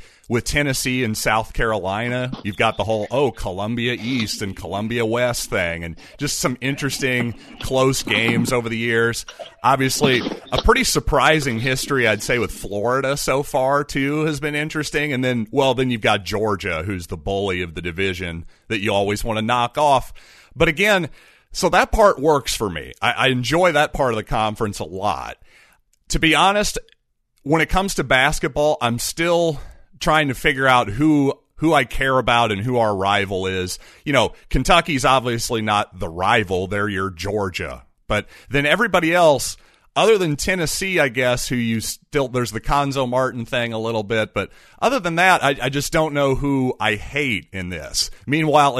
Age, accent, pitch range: 40-59, American, 110-145 Hz